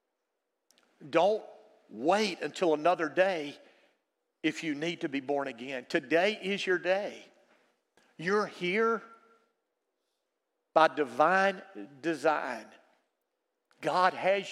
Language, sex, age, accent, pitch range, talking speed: English, male, 50-69, American, 150-195 Hz, 95 wpm